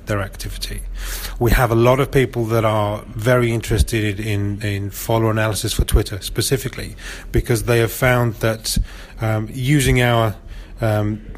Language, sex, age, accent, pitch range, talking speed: English, male, 30-49, British, 100-120 Hz, 150 wpm